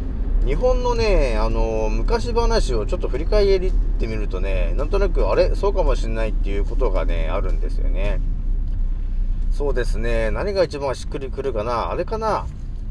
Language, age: Japanese, 40-59